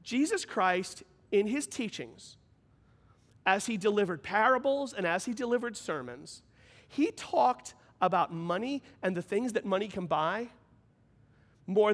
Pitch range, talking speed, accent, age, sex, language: 190-240 Hz, 130 wpm, American, 40-59, male, English